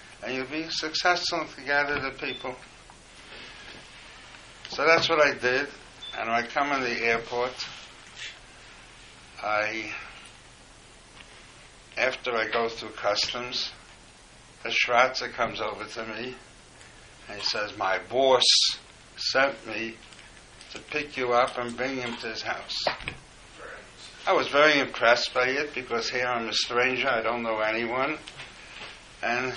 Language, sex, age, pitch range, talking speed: English, male, 60-79, 115-135 Hz, 130 wpm